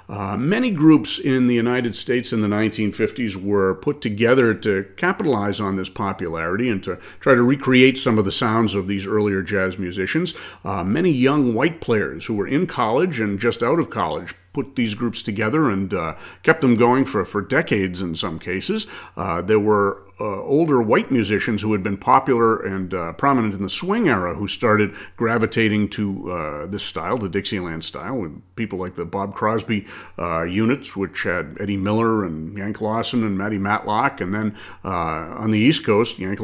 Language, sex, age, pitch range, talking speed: English, male, 50-69, 100-120 Hz, 190 wpm